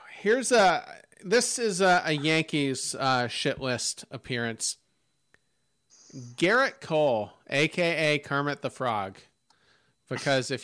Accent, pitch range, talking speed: American, 130-165 Hz, 105 wpm